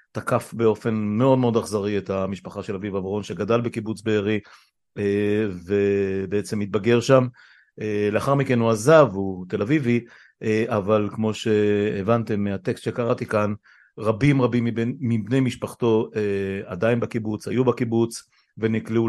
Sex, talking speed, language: male, 125 wpm, Hebrew